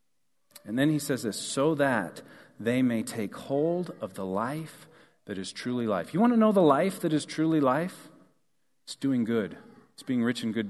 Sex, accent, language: male, American, English